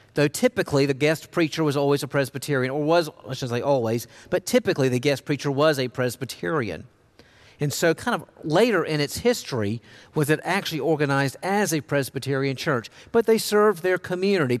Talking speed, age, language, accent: 180 wpm, 50-69, English, American